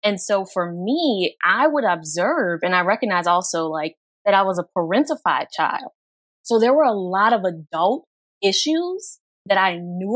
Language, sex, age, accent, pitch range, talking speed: English, female, 20-39, American, 175-225 Hz, 170 wpm